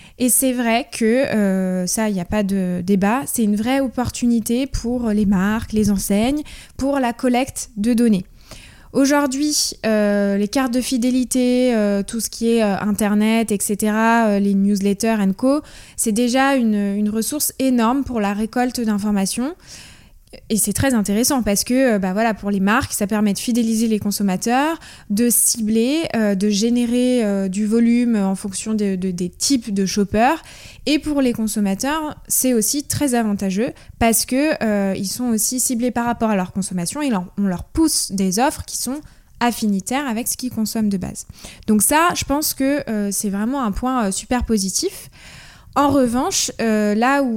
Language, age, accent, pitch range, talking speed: French, 20-39, French, 205-250 Hz, 175 wpm